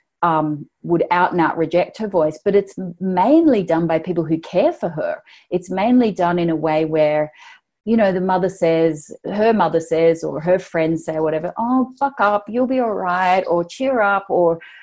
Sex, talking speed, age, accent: female, 200 wpm, 30-49, Australian